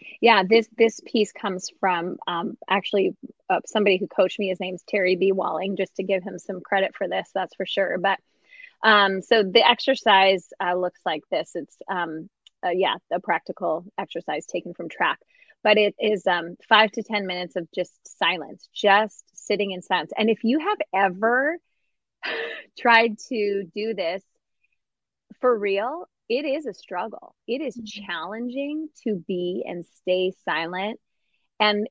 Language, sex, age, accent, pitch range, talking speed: English, female, 20-39, American, 185-225 Hz, 165 wpm